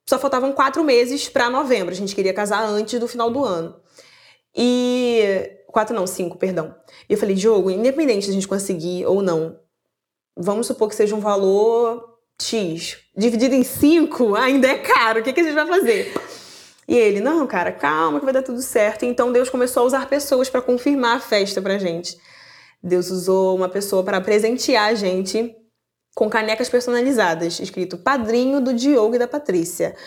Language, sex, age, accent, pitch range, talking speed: Portuguese, female, 20-39, Brazilian, 195-260 Hz, 180 wpm